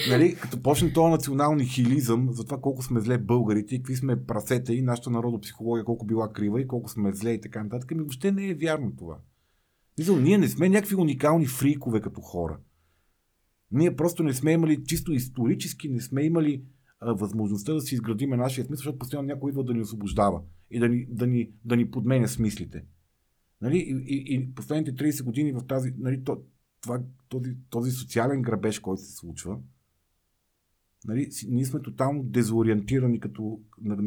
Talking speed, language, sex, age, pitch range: 185 wpm, Bulgarian, male, 40-59, 110-140 Hz